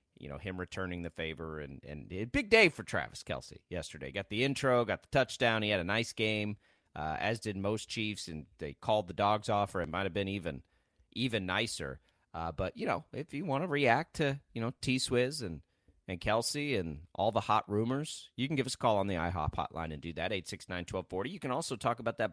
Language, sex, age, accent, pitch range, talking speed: English, male, 30-49, American, 95-135 Hz, 230 wpm